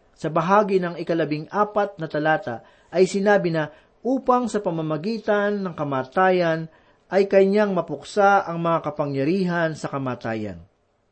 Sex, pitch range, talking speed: male, 130-195 Hz, 125 wpm